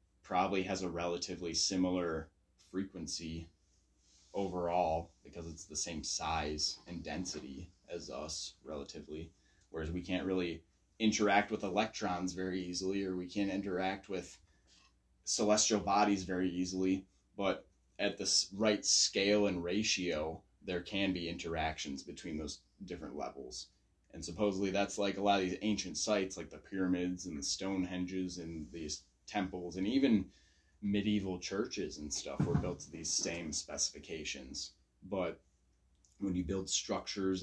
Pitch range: 85-95 Hz